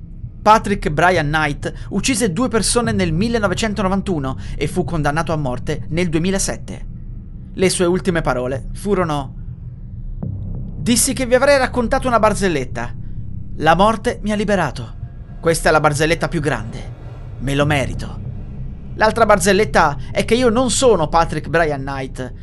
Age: 30-49